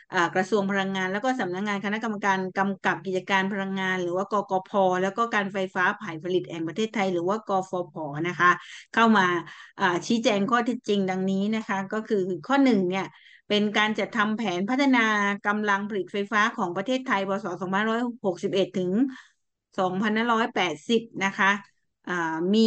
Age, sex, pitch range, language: 20-39, female, 185-220 Hz, English